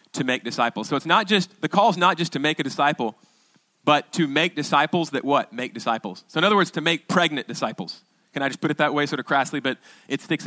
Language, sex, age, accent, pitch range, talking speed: English, male, 30-49, American, 135-175 Hz, 260 wpm